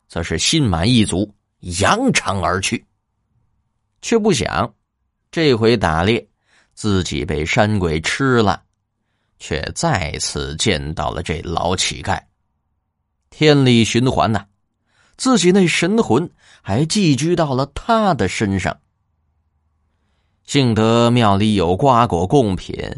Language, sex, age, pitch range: Chinese, male, 20-39, 85-135 Hz